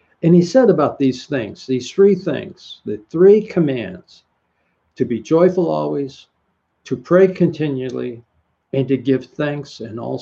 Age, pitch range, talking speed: 60-79, 120-160 Hz, 145 wpm